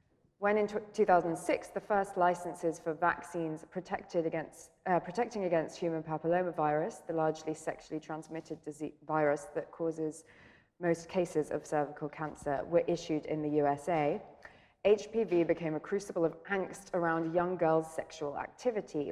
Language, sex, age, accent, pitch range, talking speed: English, female, 20-39, British, 155-180 Hz, 135 wpm